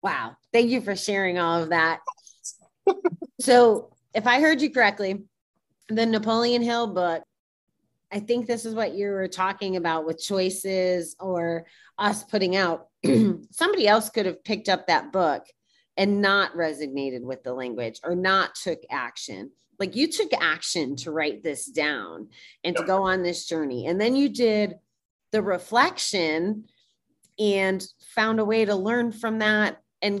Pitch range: 165-210 Hz